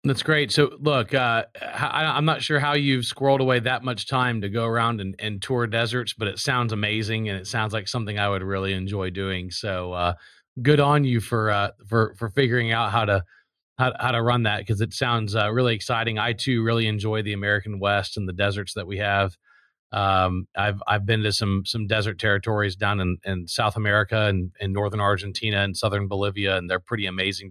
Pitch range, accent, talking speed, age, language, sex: 100-125 Hz, American, 215 wpm, 30-49, English, male